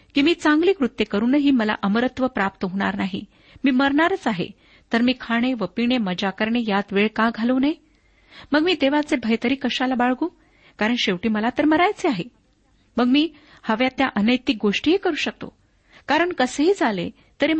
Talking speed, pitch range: 165 wpm, 210-280 Hz